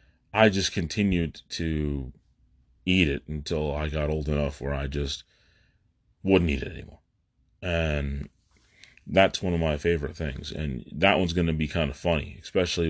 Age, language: 30-49, English